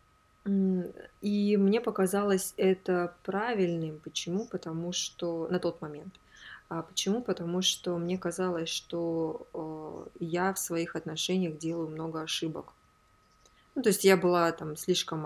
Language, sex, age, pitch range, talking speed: Russian, female, 20-39, 160-195 Hz, 120 wpm